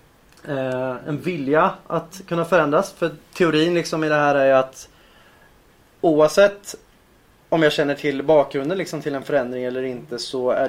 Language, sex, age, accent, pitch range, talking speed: Swedish, male, 20-39, native, 130-155 Hz, 140 wpm